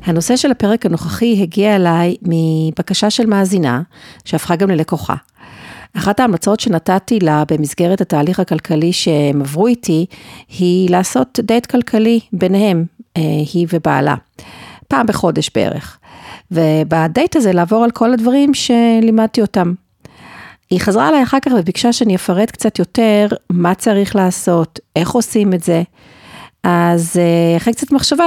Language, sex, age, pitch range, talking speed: Hebrew, female, 50-69, 170-225 Hz, 130 wpm